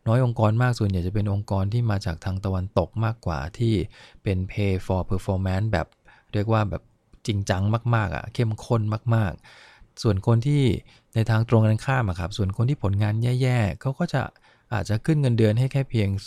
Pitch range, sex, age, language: 95-115 Hz, male, 20-39, English